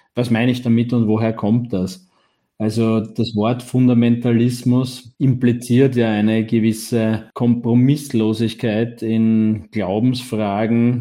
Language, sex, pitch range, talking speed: German, male, 110-125 Hz, 105 wpm